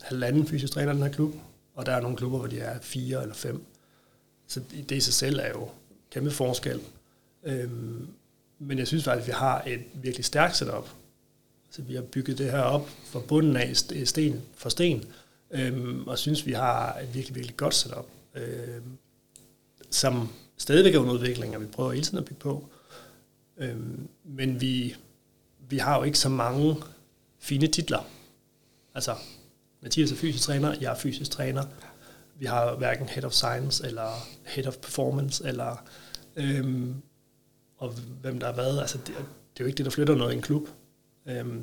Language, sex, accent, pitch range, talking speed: Danish, male, native, 125-140 Hz, 175 wpm